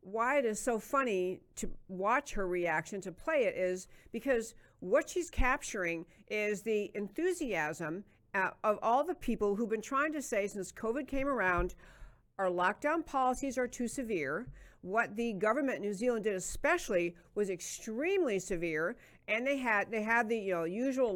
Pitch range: 195-260 Hz